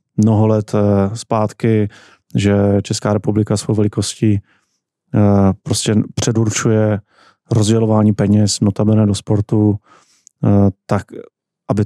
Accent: native